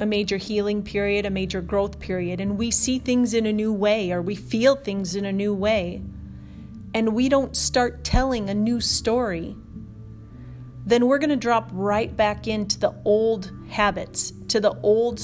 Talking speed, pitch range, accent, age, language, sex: 175 wpm, 185-225 Hz, American, 30-49, English, female